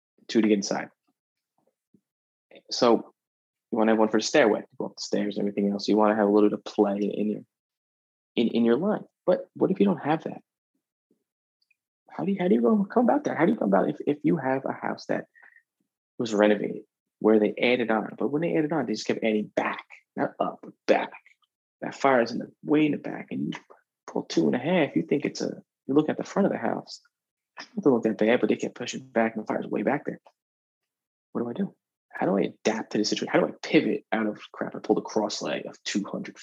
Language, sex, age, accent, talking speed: English, male, 20-39, American, 255 wpm